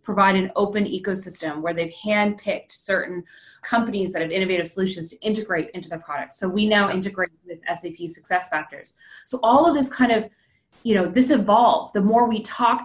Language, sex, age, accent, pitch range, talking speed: English, female, 20-39, American, 175-215 Hz, 185 wpm